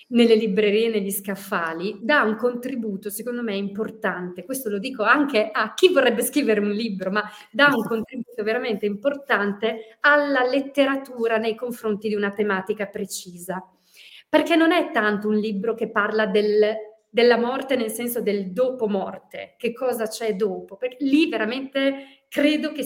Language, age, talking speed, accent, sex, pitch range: Italian, 40-59, 155 wpm, native, female, 200-260 Hz